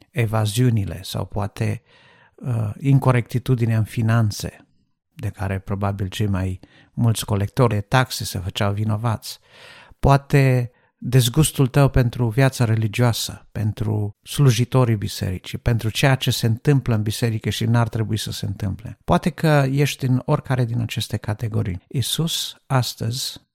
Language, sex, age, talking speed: Romanian, male, 50-69, 135 wpm